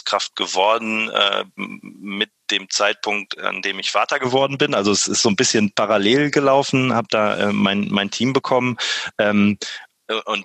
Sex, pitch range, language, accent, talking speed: male, 95-110 Hz, German, German, 160 wpm